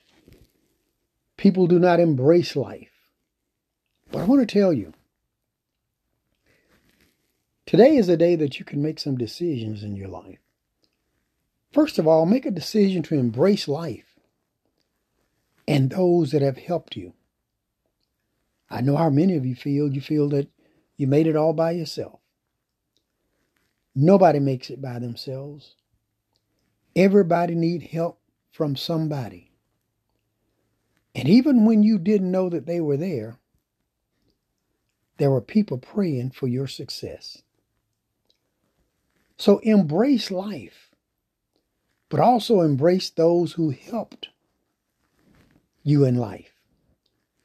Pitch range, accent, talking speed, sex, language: 130-185 Hz, American, 120 wpm, male, English